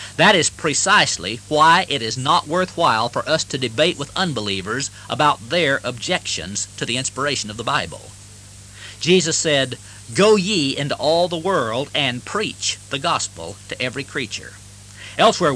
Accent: American